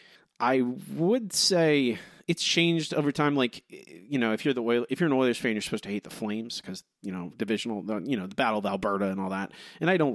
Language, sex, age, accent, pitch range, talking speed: English, male, 30-49, American, 105-145 Hz, 265 wpm